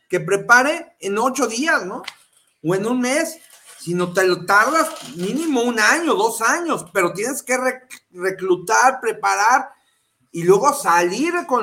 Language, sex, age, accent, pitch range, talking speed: Spanish, male, 40-59, Mexican, 185-280 Hz, 150 wpm